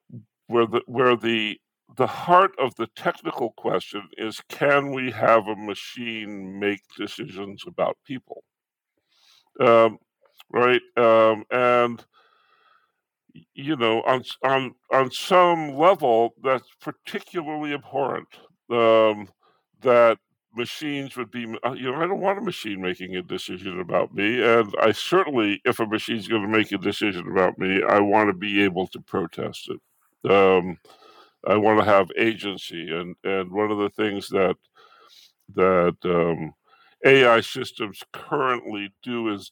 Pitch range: 100-125 Hz